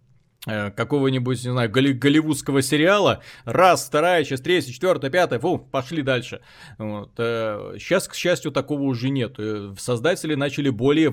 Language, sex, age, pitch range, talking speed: Russian, male, 20-39, 120-140 Hz, 130 wpm